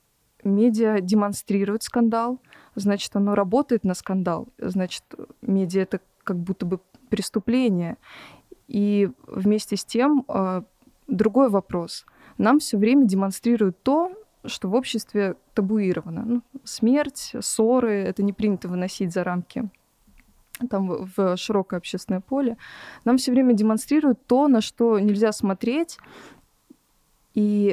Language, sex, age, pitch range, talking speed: Russian, female, 20-39, 195-240 Hz, 120 wpm